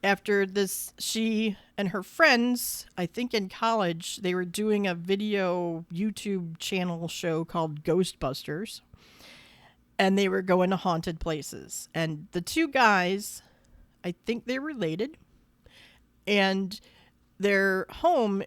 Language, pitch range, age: English, 170-210 Hz, 40-59